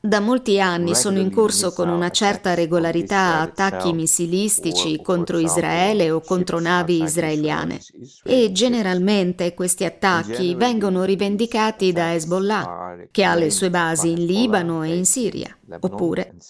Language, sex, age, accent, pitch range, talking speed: Italian, female, 40-59, native, 170-215 Hz, 135 wpm